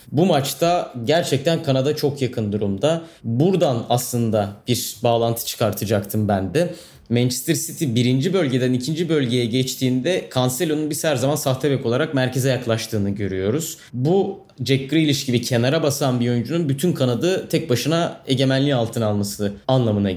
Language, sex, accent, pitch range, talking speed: Turkish, male, native, 125-170 Hz, 135 wpm